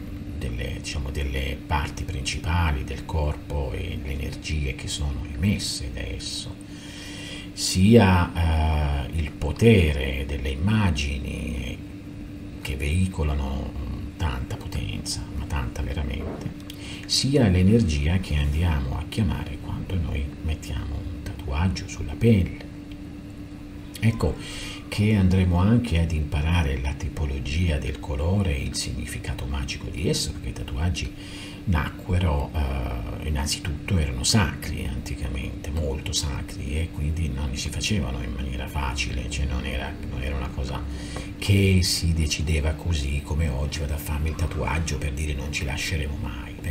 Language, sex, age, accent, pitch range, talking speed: Italian, male, 50-69, native, 75-95 Hz, 130 wpm